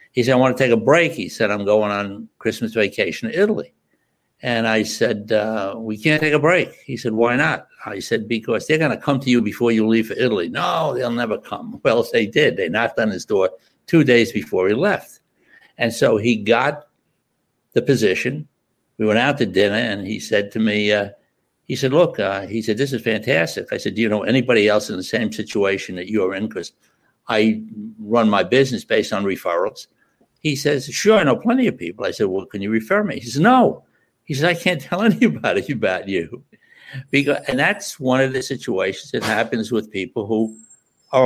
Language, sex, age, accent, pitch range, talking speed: English, male, 60-79, American, 110-145 Hz, 215 wpm